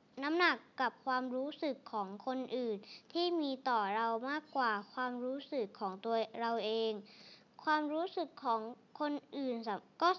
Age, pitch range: 20-39, 225-280 Hz